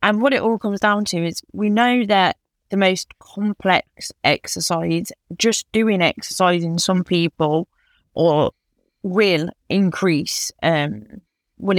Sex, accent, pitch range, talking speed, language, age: female, British, 170-200 Hz, 130 wpm, English, 20-39